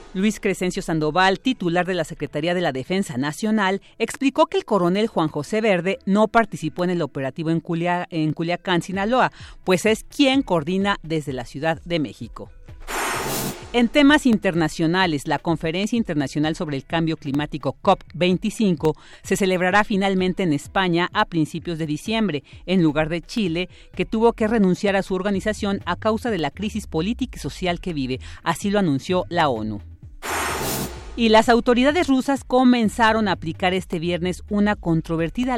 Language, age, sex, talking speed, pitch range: Spanish, 40-59, female, 155 wpm, 160-210 Hz